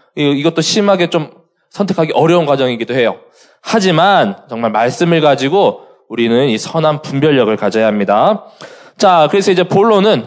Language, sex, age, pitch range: Korean, male, 20-39, 120-185 Hz